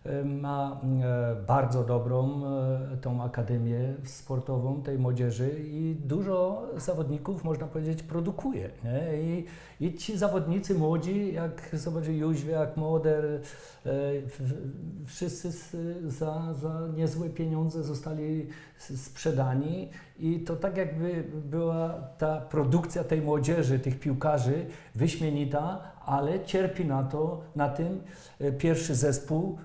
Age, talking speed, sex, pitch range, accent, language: 50-69, 105 wpm, male, 135-165 Hz, native, Polish